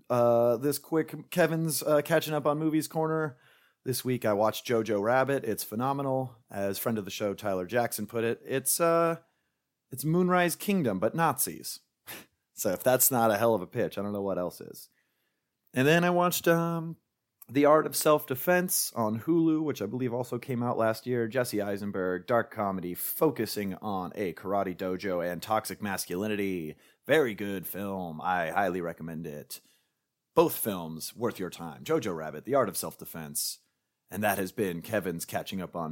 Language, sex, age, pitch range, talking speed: English, male, 30-49, 100-150 Hz, 175 wpm